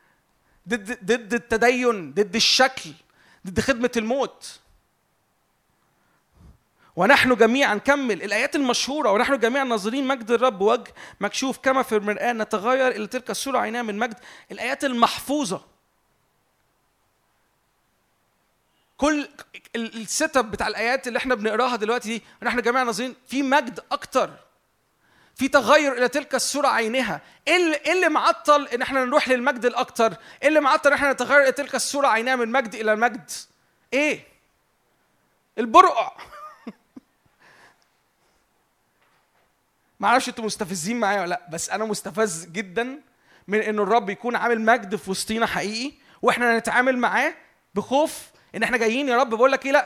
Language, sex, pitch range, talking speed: Arabic, male, 220-270 Hz, 130 wpm